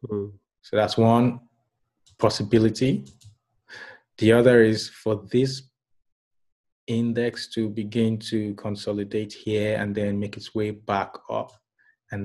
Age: 30-49